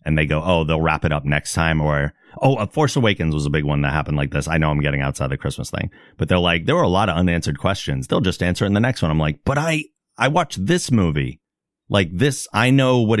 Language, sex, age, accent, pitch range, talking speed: English, male, 30-49, American, 75-90 Hz, 275 wpm